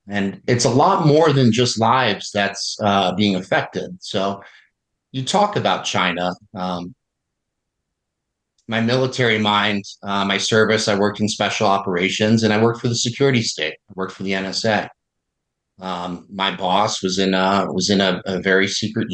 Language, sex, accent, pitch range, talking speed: English, male, American, 95-115 Hz, 165 wpm